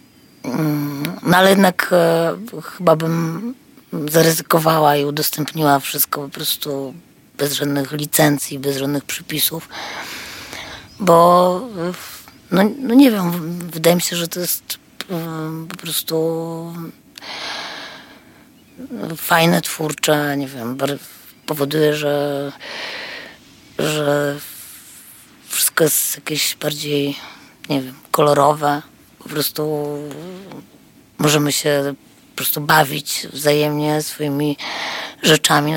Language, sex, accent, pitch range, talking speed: Polish, female, native, 145-165 Hz, 90 wpm